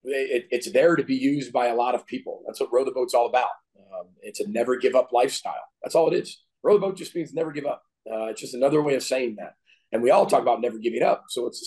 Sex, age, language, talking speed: male, 40-59, English, 290 wpm